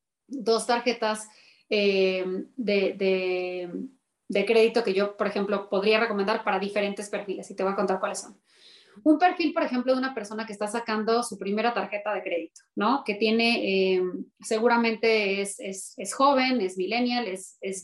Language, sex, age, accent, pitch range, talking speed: Spanish, female, 20-39, Mexican, 195-230 Hz, 170 wpm